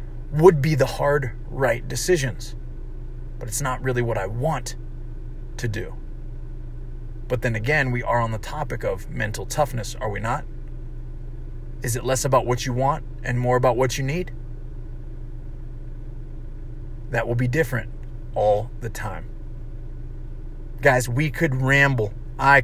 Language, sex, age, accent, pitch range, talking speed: English, male, 30-49, American, 120-145 Hz, 145 wpm